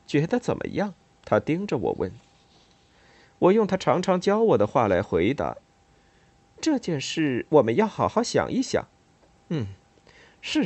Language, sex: Chinese, male